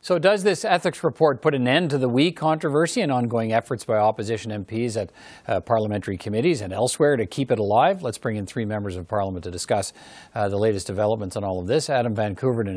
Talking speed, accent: 220 wpm, American